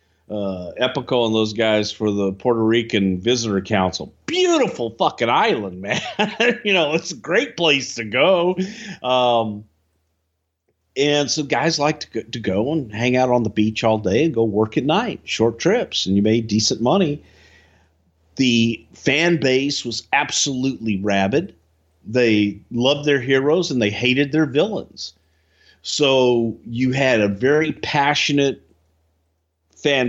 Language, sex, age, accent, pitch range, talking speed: English, male, 50-69, American, 105-140 Hz, 145 wpm